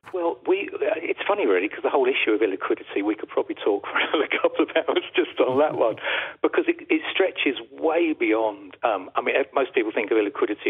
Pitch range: 310-425 Hz